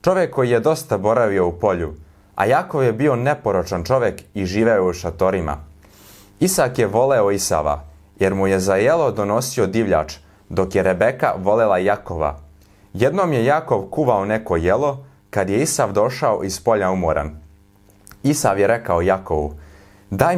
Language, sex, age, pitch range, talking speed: English, male, 30-49, 80-120 Hz, 150 wpm